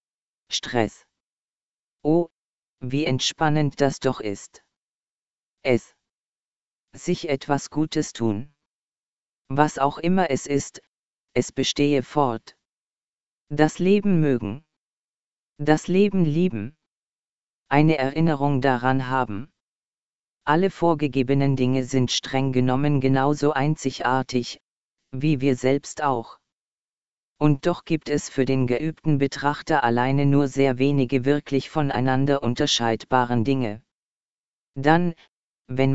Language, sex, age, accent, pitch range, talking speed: German, female, 40-59, German, 130-150 Hz, 100 wpm